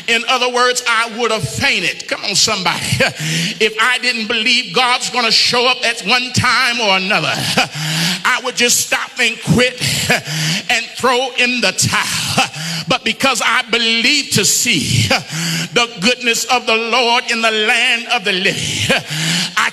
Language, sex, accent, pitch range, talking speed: English, male, American, 195-245 Hz, 160 wpm